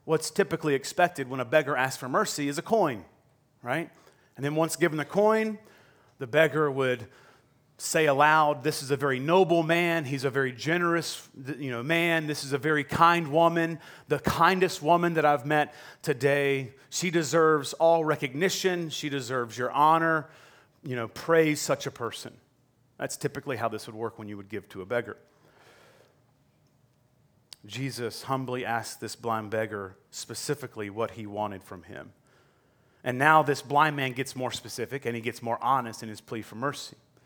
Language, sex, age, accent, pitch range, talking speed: English, male, 30-49, American, 120-155 Hz, 170 wpm